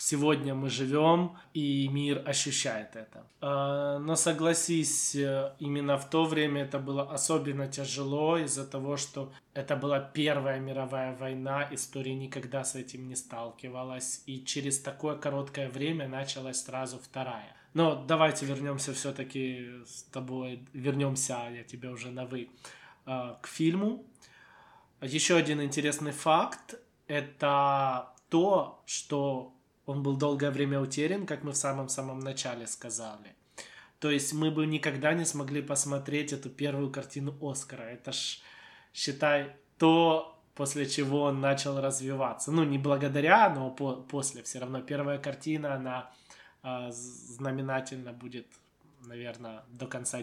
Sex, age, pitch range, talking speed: male, 20-39, 130-145 Hz, 130 wpm